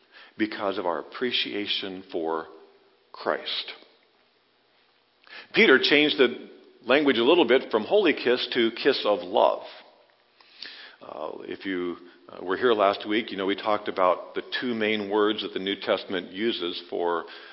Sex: male